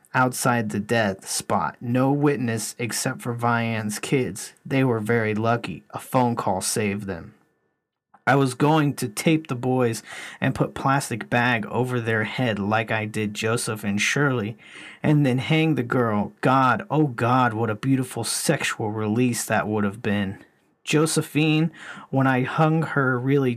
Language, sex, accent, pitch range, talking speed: English, male, American, 110-130 Hz, 160 wpm